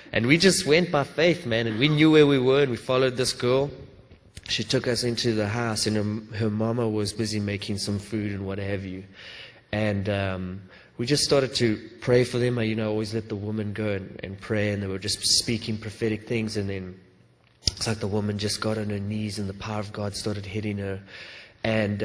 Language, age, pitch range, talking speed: English, 20-39, 100-115 Hz, 225 wpm